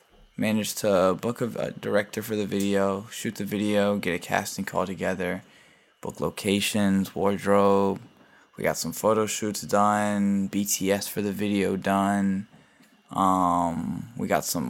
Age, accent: 10-29, American